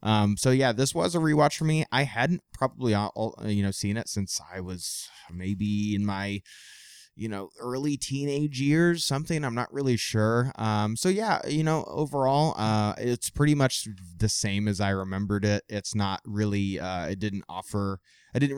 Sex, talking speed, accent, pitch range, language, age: male, 185 wpm, American, 95-125 Hz, English, 20-39